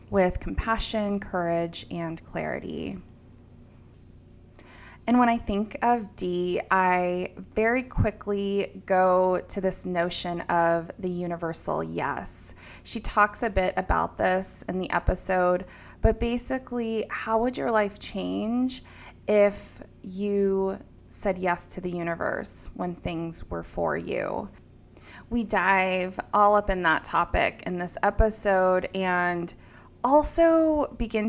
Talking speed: 120 wpm